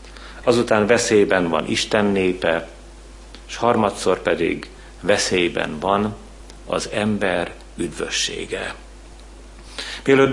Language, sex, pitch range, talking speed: Hungarian, male, 90-115 Hz, 80 wpm